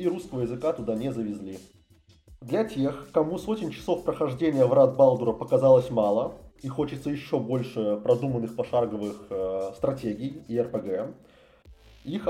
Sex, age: male, 20-39